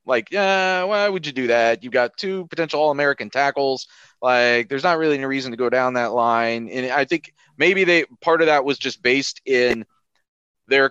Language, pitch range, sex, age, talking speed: English, 115-135 Hz, male, 30-49, 205 wpm